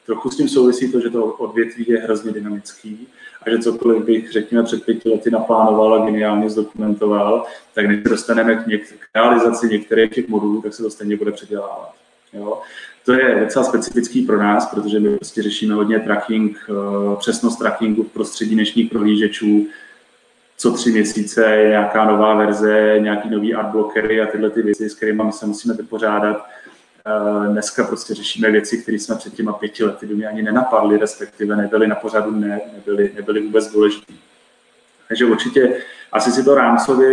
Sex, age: male, 20-39